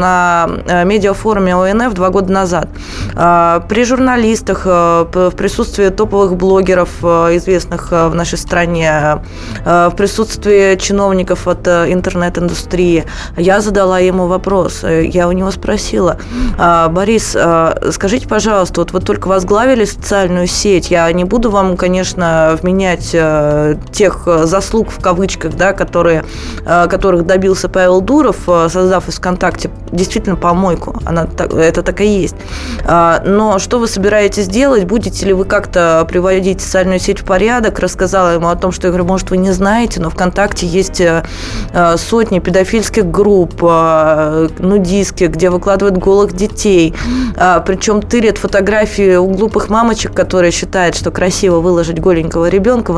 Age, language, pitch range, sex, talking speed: 20-39, Russian, 170-195 Hz, female, 130 wpm